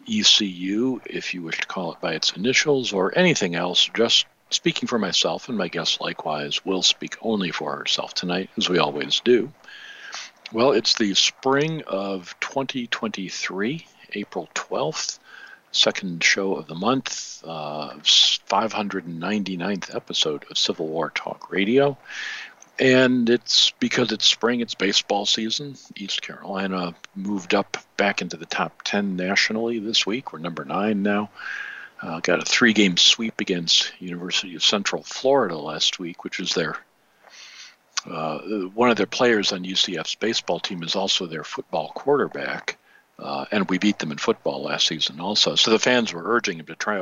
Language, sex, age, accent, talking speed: English, male, 50-69, American, 155 wpm